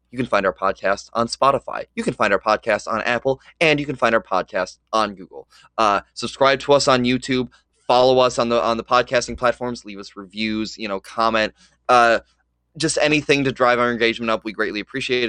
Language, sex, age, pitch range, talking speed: English, male, 20-39, 110-130 Hz, 210 wpm